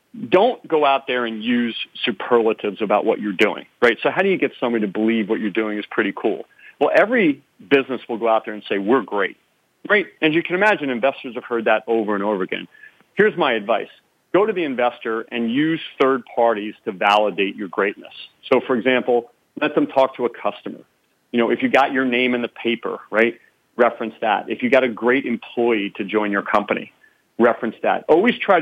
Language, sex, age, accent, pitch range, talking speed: English, male, 40-59, American, 105-130 Hz, 210 wpm